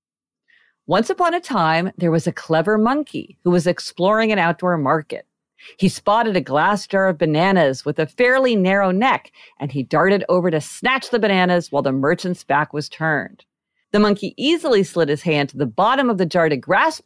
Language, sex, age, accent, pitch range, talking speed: English, female, 50-69, American, 155-225 Hz, 195 wpm